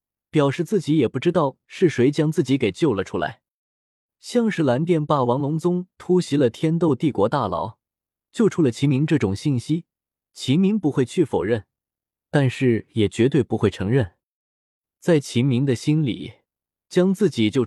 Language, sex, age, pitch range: Chinese, male, 20-39, 105-160 Hz